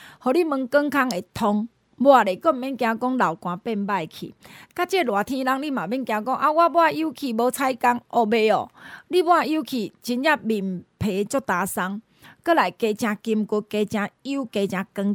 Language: Chinese